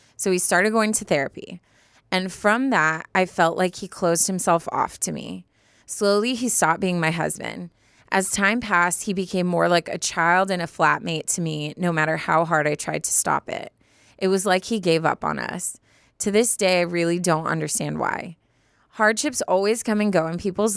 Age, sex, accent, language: 20-39, female, American, English